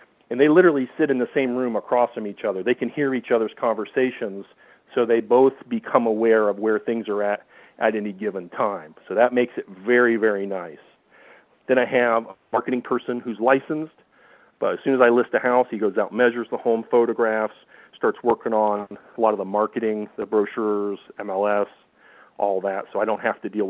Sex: male